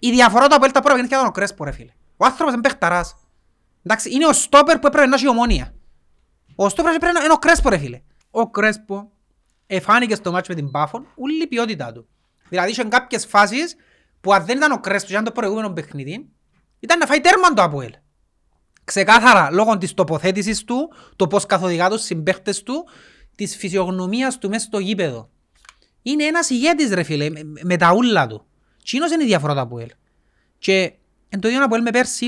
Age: 30-49